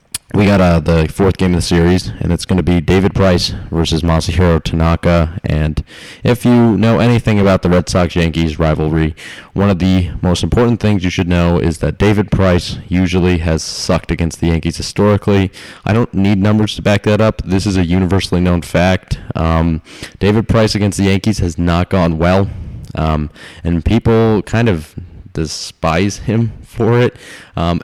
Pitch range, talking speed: 85-100 Hz, 180 wpm